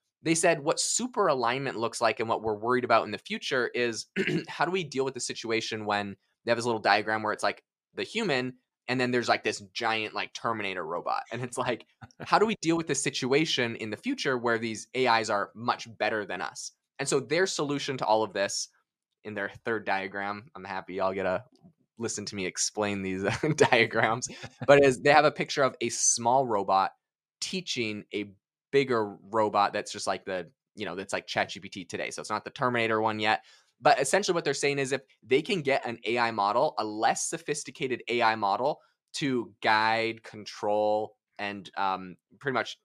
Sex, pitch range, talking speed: male, 100-135 Hz, 200 wpm